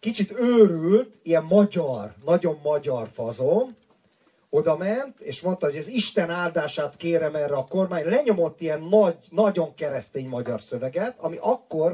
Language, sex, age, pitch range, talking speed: Hungarian, male, 40-59, 160-220 Hz, 140 wpm